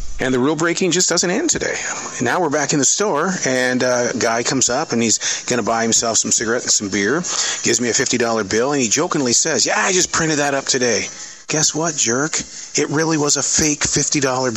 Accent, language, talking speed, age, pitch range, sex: American, English, 225 wpm, 40-59, 115-160 Hz, male